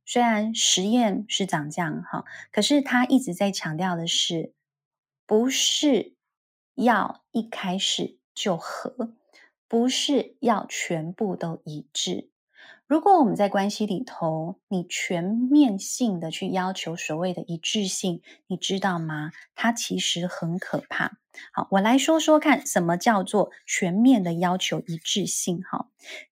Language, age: Chinese, 20-39